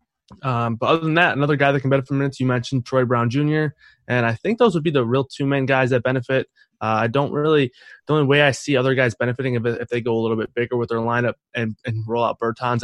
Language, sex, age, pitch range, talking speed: English, male, 20-39, 115-130 Hz, 275 wpm